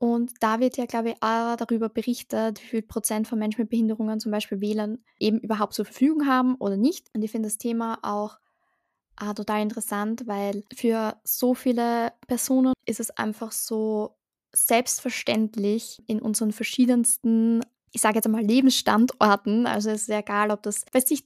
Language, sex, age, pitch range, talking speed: German, female, 10-29, 210-235 Hz, 175 wpm